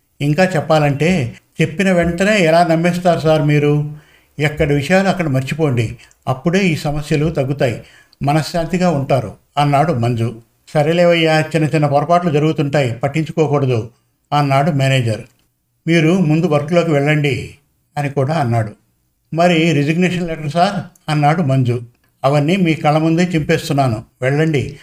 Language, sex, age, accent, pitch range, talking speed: Telugu, male, 50-69, native, 135-165 Hz, 110 wpm